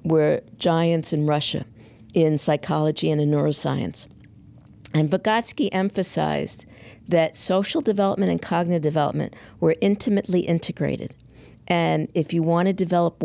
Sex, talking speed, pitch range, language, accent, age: female, 120 wpm, 150-190 Hz, English, American, 50-69